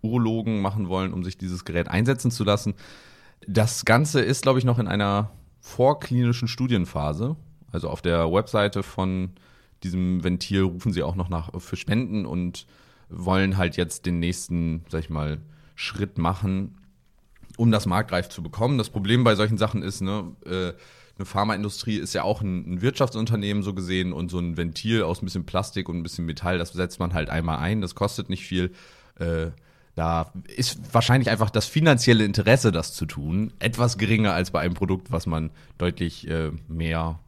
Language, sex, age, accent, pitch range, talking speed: German, male, 30-49, German, 85-115 Hz, 180 wpm